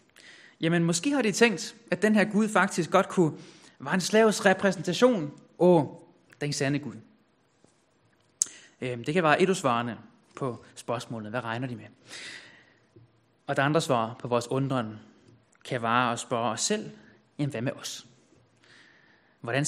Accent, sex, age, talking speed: native, male, 20-39, 150 wpm